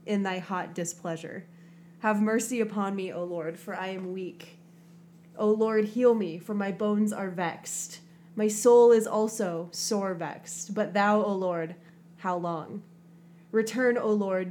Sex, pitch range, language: female, 170-210 Hz, English